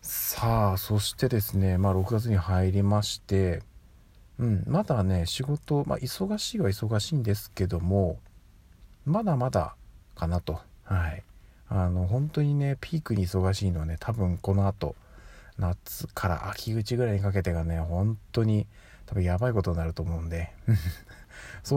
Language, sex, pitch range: Japanese, male, 90-105 Hz